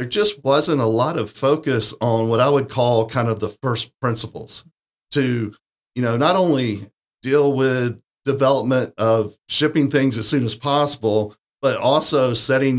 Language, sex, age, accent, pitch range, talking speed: English, male, 40-59, American, 110-135 Hz, 165 wpm